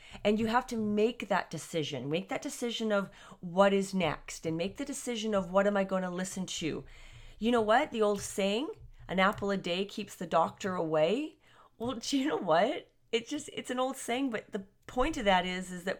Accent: American